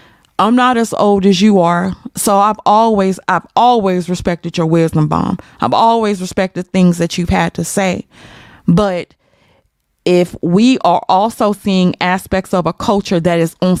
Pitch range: 180-265 Hz